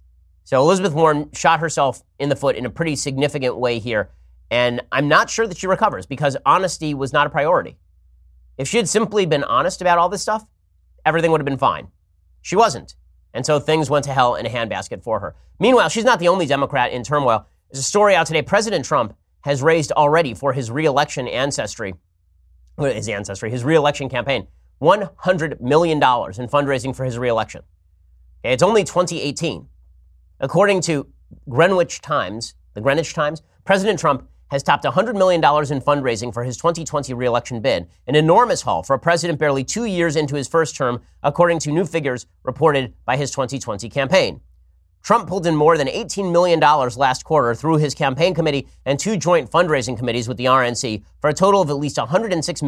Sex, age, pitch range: male, 30-49, 120-160 Hz